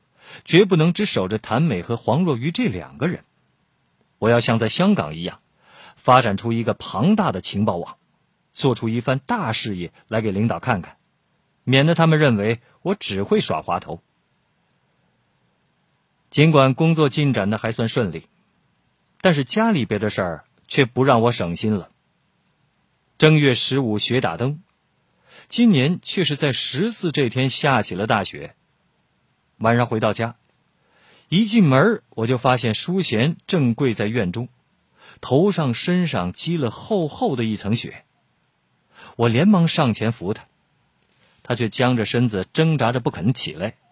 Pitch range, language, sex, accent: 110-160 Hz, Chinese, male, native